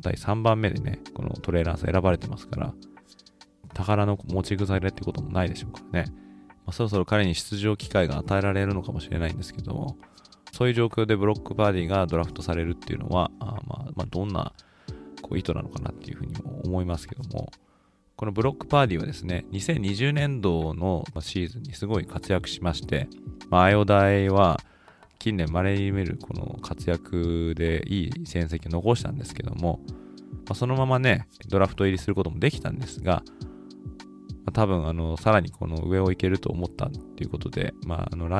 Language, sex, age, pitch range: Japanese, male, 20-39, 85-110 Hz